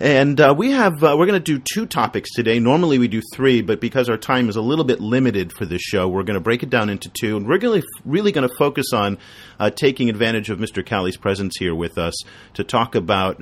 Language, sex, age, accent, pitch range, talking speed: English, male, 40-59, American, 95-125 Hz, 265 wpm